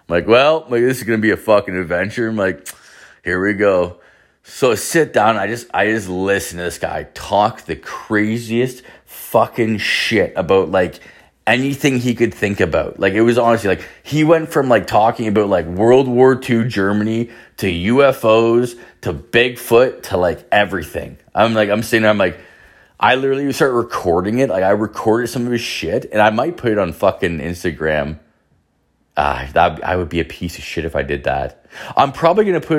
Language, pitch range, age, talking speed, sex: English, 90-120 Hz, 30-49, 195 wpm, male